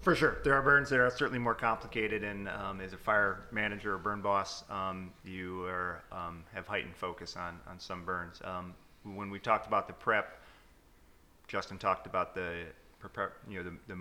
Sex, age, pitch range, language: male, 30-49, 85-105 Hz, English